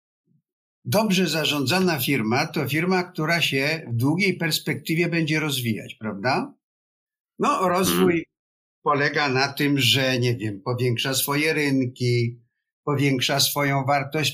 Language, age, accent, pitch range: Polish, 50-69, native, 130-180 Hz